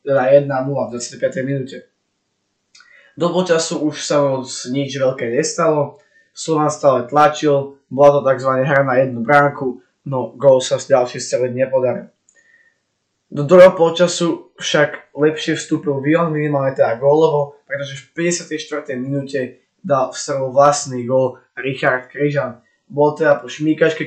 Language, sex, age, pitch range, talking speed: Slovak, male, 20-39, 130-150 Hz, 130 wpm